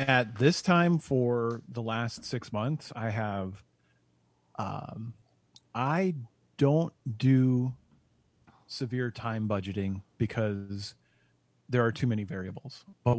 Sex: male